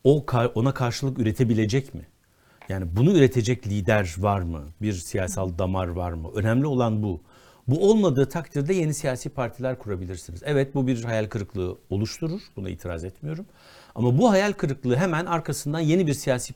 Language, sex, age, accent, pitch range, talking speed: Turkish, male, 60-79, native, 100-140 Hz, 160 wpm